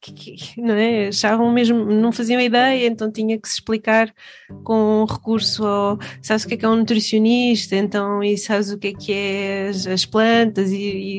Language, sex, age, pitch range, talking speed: Portuguese, female, 20-39, 175-220 Hz, 180 wpm